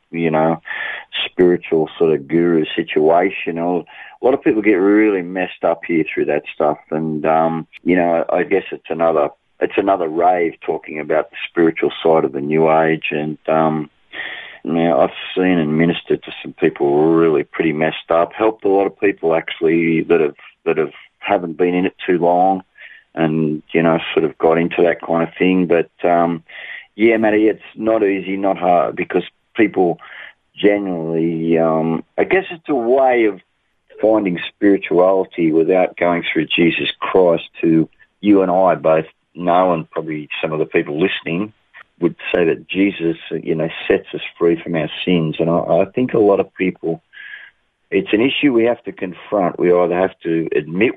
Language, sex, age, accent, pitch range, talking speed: English, male, 30-49, Australian, 80-95 Hz, 180 wpm